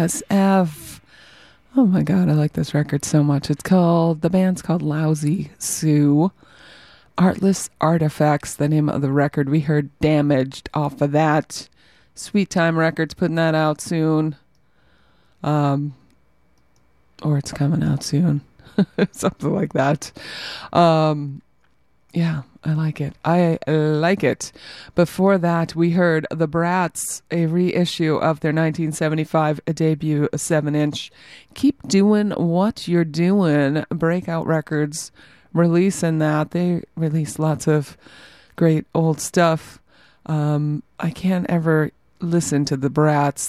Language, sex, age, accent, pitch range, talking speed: English, female, 30-49, American, 150-170 Hz, 125 wpm